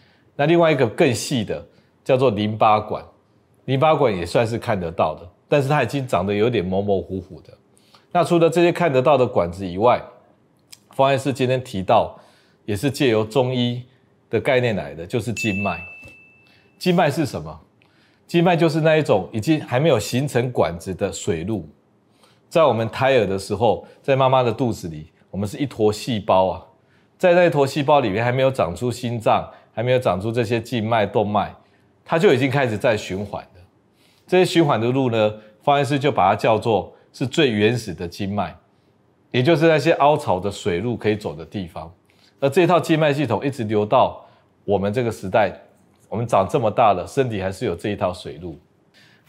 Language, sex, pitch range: Chinese, male, 100-140 Hz